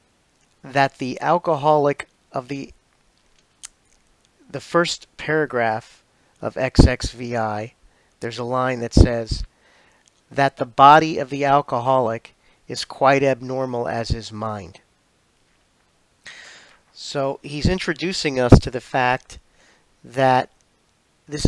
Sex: male